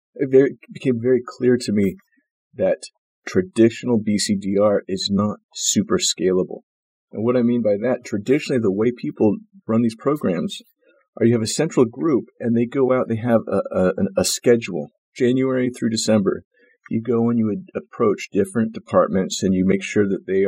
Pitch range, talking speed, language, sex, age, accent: 105-130 Hz, 175 wpm, English, male, 40-59, American